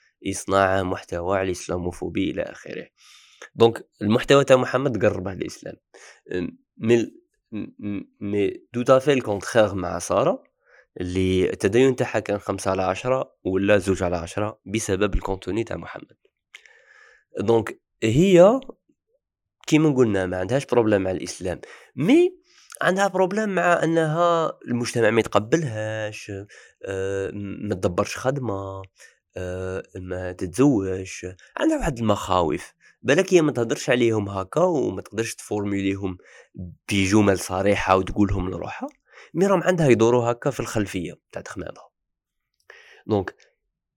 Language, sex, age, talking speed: Arabic, male, 20-39, 110 wpm